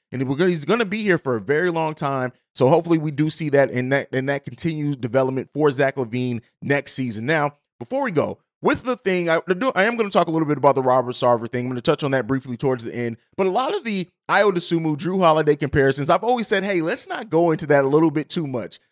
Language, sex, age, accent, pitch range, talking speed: English, male, 30-49, American, 140-205 Hz, 260 wpm